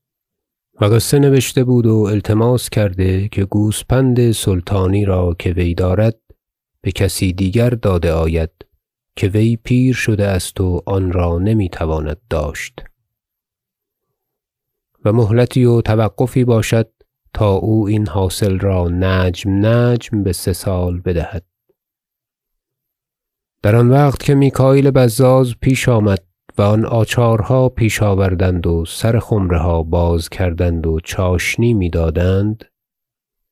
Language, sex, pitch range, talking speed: Persian, male, 90-120 Hz, 115 wpm